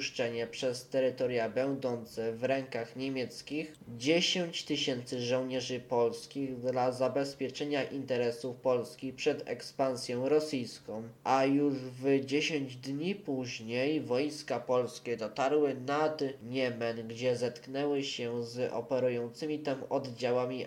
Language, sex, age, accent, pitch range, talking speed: Polish, male, 20-39, native, 125-145 Hz, 100 wpm